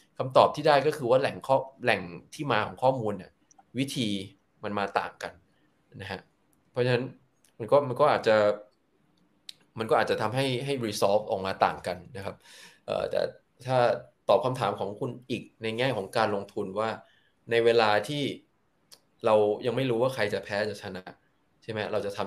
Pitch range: 105-135 Hz